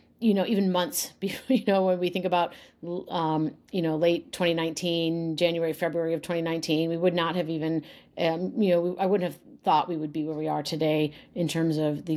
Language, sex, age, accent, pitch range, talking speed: English, female, 40-59, American, 155-180 Hz, 205 wpm